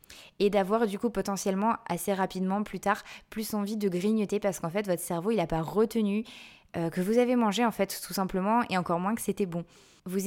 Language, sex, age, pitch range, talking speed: French, female, 20-39, 185-235 Hz, 220 wpm